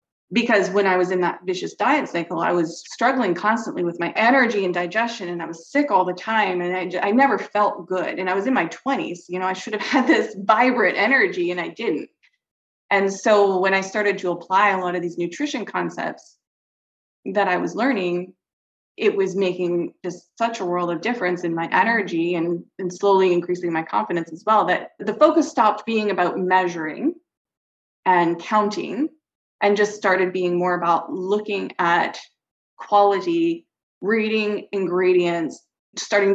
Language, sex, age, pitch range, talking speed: English, female, 20-39, 175-225 Hz, 175 wpm